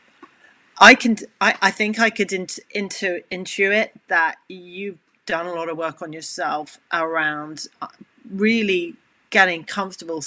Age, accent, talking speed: 40-59, British, 135 wpm